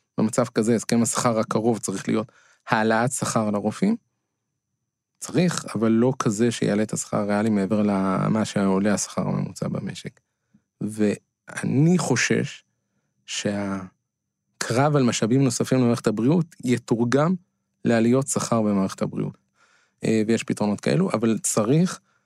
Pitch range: 110-130 Hz